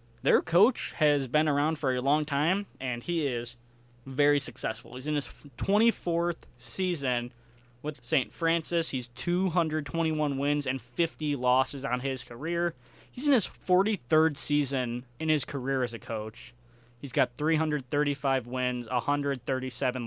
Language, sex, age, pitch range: English, male, 20-39, 120-150 Hz